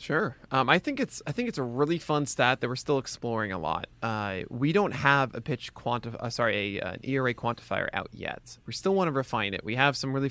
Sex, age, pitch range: male, 20-39, 110-135 Hz